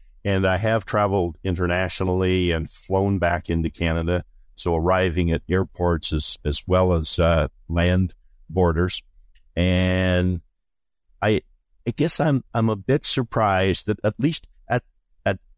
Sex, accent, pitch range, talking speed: male, American, 85-105 Hz, 135 wpm